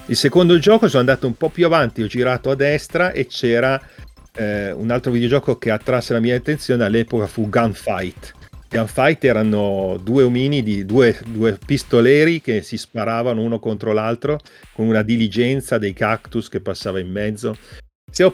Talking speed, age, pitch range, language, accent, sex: 165 wpm, 40-59, 100-125 Hz, Italian, native, male